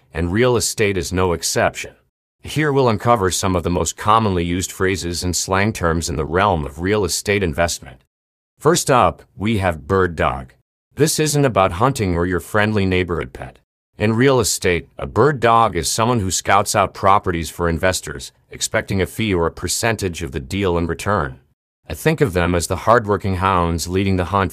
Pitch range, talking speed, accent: 85-105 Hz, 190 wpm, American